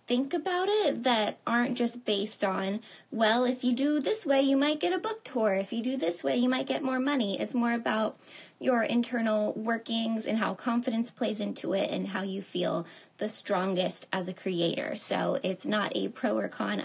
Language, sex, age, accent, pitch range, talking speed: English, female, 20-39, American, 200-265 Hz, 205 wpm